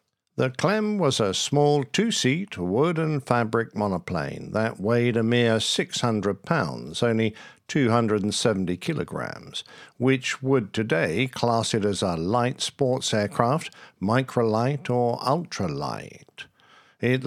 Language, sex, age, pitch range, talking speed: English, male, 50-69, 110-140 Hz, 110 wpm